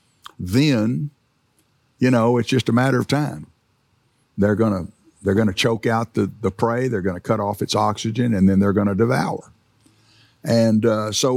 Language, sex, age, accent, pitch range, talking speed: English, male, 60-79, American, 105-130 Hz, 190 wpm